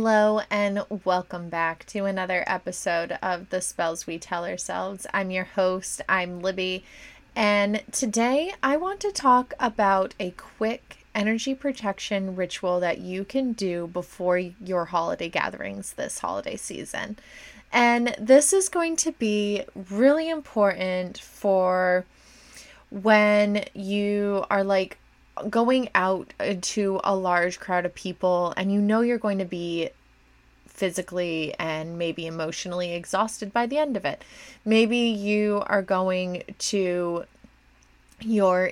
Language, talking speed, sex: English, 130 wpm, female